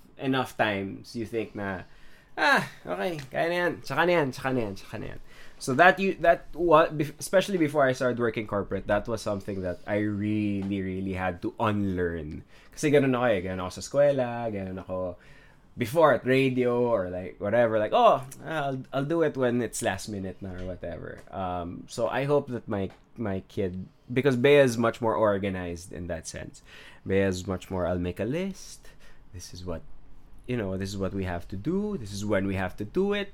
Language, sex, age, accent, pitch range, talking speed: English, male, 20-39, Filipino, 95-125 Hz, 195 wpm